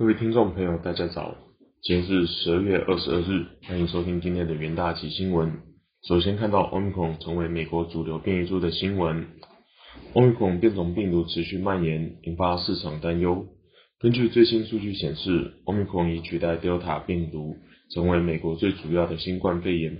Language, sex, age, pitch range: Chinese, male, 20-39, 85-95 Hz